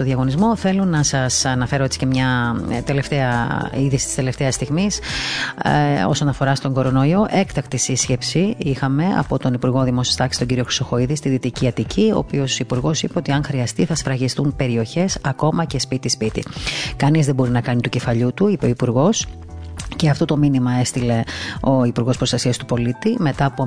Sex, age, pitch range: female, 30-49, 125-150 Hz